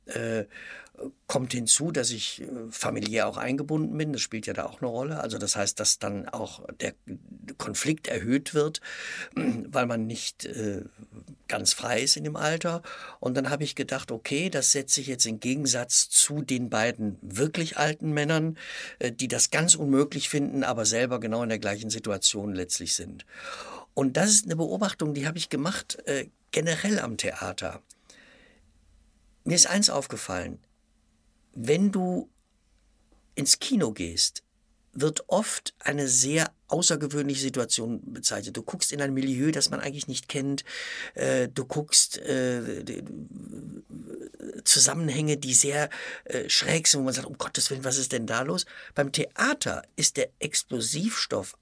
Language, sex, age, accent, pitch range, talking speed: German, male, 60-79, German, 120-155 Hz, 150 wpm